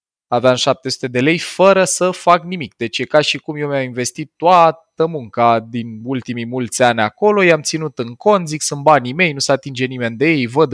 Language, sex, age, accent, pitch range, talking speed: Romanian, male, 20-39, native, 125-160 Hz, 220 wpm